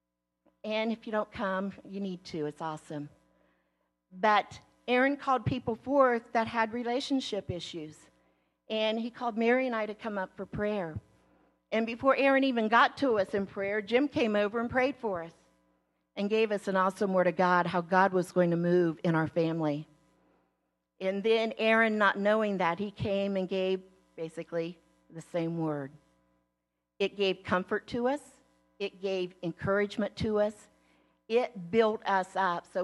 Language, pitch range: English, 150-215 Hz